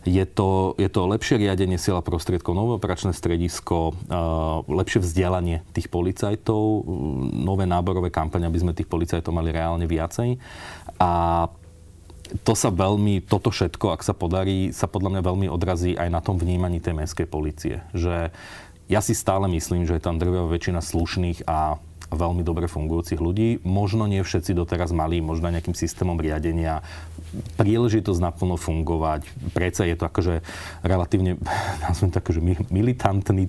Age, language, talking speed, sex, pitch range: 30-49, Slovak, 145 wpm, male, 85-100 Hz